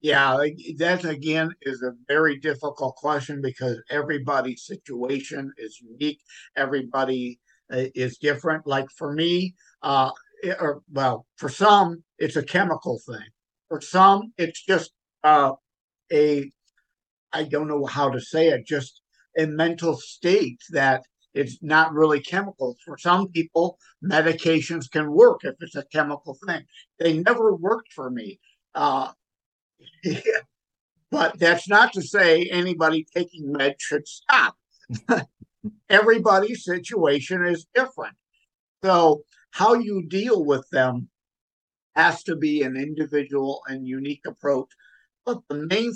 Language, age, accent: English, 50-69, American